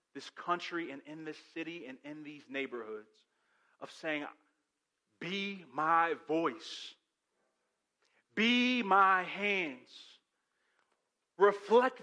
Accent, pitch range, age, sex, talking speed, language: American, 130-180 Hz, 40-59, male, 95 wpm, English